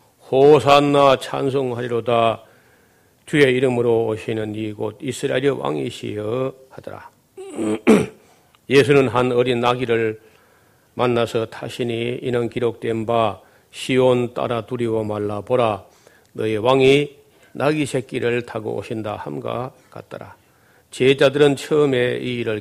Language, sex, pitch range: Korean, male, 115-135 Hz